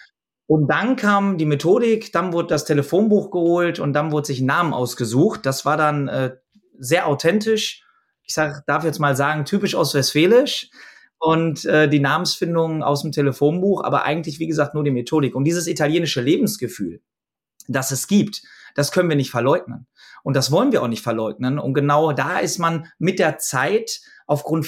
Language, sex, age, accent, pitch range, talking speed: German, male, 30-49, German, 135-170 Hz, 180 wpm